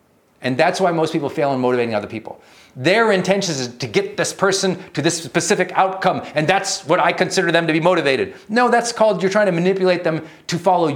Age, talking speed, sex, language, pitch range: 40-59, 220 wpm, male, English, 145-185 Hz